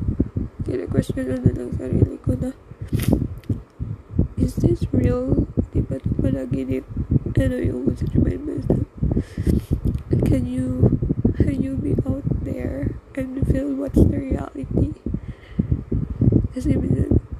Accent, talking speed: native, 90 wpm